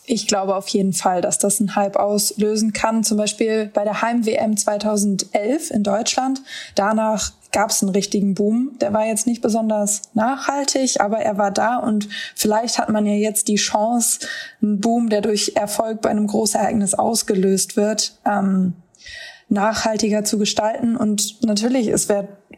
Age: 20-39